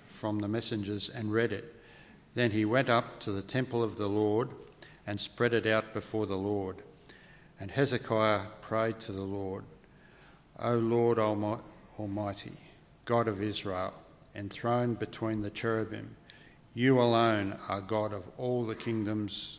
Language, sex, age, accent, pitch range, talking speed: English, male, 50-69, Australian, 105-125 Hz, 145 wpm